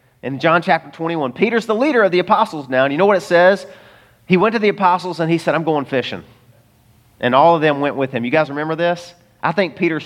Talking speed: 250 wpm